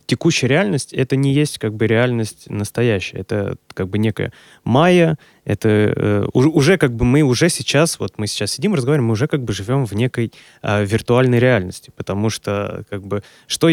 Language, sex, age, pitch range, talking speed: Russian, male, 20-39, 105-135 Hz, 185 wpm